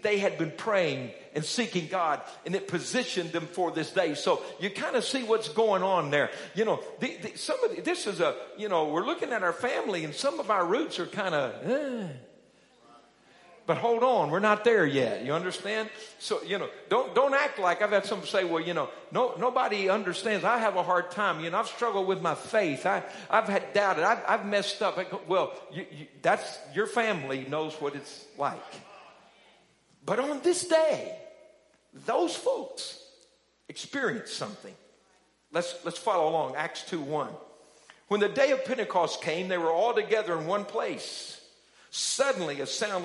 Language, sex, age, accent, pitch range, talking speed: English, male, 50-69, American, 175-265 Hz, 190 wpm